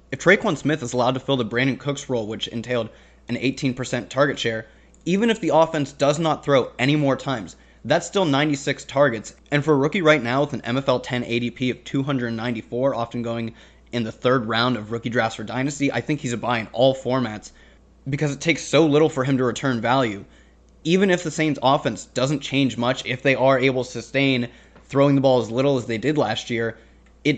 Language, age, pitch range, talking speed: English, 20-39, 115-140 Hz, 215 wpm